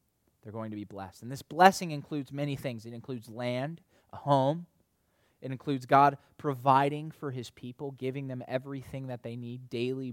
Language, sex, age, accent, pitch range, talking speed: English, male, 20-39, American, 110-140 Hz, 180 wpm